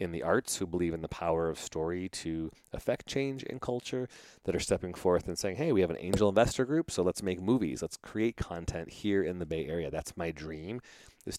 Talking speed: 230 wpm